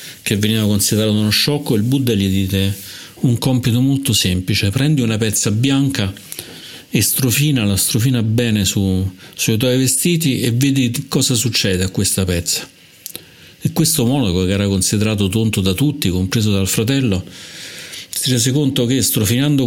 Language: Italian